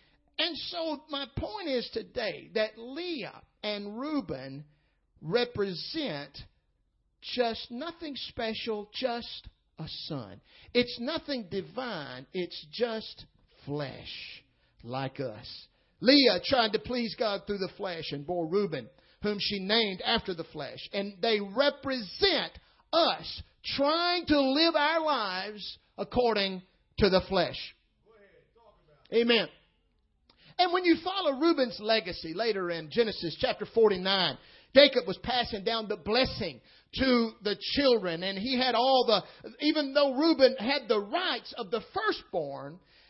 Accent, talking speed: American, 125 wpm